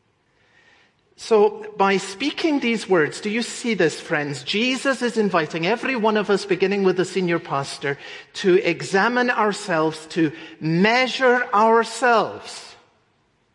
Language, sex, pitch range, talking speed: English, male, 155-205 Hz, 125 wpm